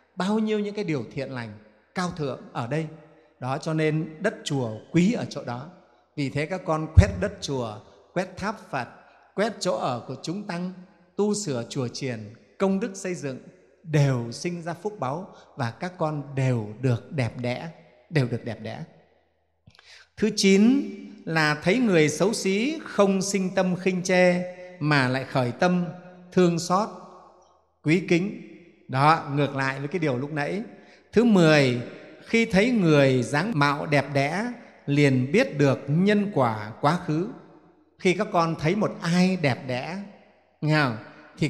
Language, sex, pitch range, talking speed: Vietnamese, male, 135-190 Hz, 165 wpm